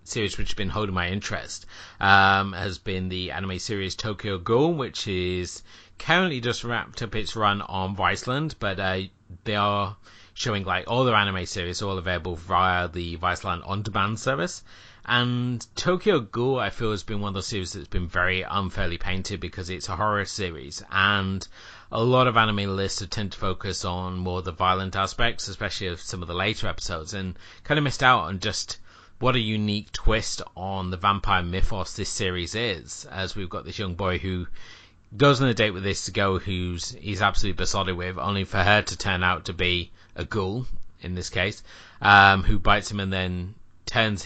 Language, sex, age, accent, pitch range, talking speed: English, male, 30-49, British, 95-110 Hz, 195 wpm